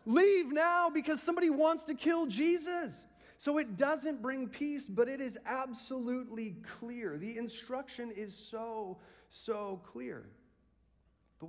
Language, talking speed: English, 130 wpm